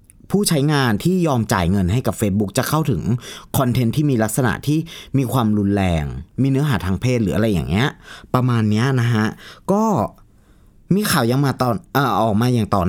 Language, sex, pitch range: Thai, male, 105-155 Hz